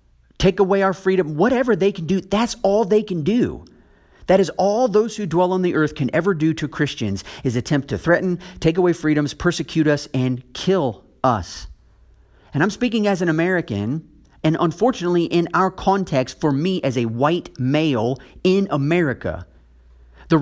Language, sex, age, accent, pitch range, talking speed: English, male, 40-59, American, 125-190 Hz, 175 wpm